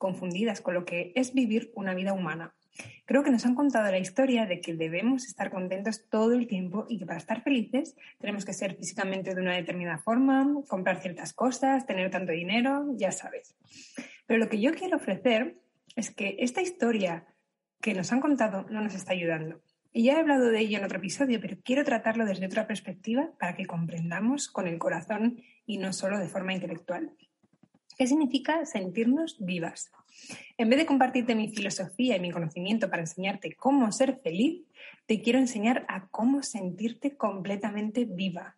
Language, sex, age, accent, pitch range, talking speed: Spanish, female, 20-39, Spanish, 185-255 Hz, 180 wpm